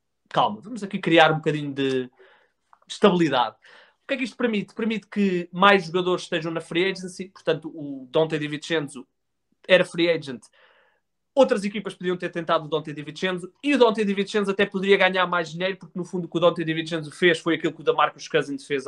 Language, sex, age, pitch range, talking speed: Portuguese, male, 20-39, 145-185 Hz, 210 wpm